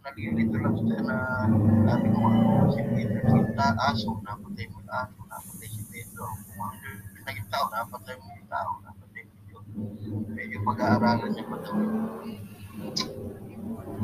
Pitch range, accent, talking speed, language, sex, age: 105-125 Hz, Filipino, 100 wpm, English, male, 30-49